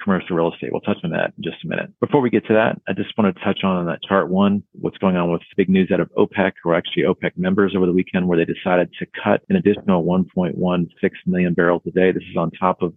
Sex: male